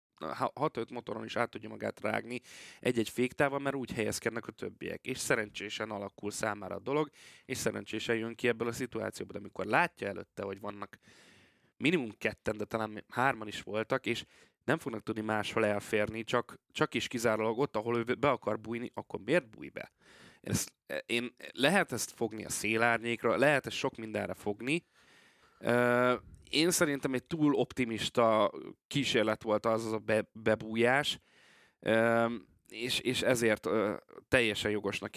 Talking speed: 155 wpm